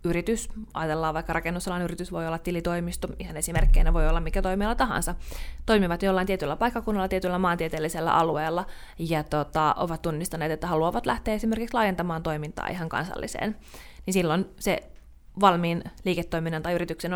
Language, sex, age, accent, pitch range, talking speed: Finnish, female, 30-49, native, 160-185 Hz, 145 wpm